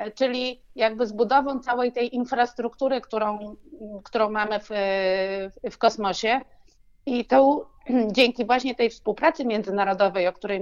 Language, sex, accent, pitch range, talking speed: Polish, female, native, 200-260 Hz, 125 wpm